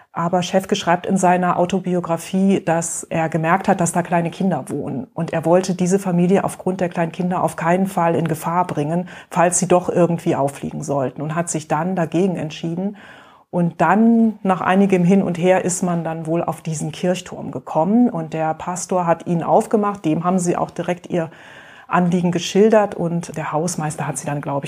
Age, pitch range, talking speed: 30-49, 165-195 Hz, 190 wpm